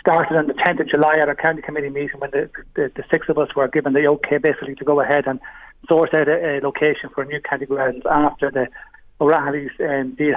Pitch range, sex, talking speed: 140-160 Hz, male, 245 wpm